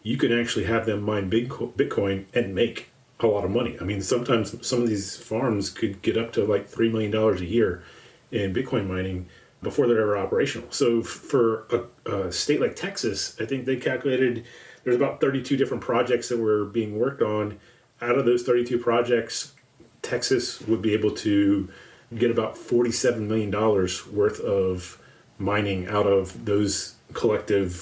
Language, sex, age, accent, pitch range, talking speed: English, male, 30-49, American, 100-125 Hz, 170 wpm